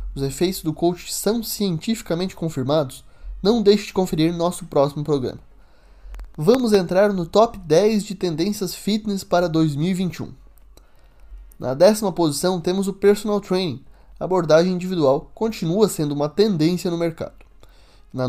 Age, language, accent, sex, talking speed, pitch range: 20-39, Portuguese, Brazilian, male, 135 wpm, 140-190 Hz